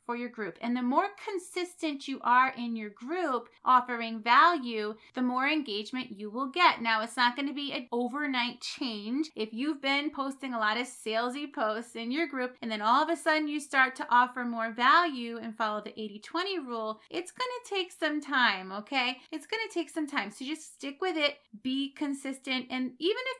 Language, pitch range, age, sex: English, 230-305 Hz, 30-49, female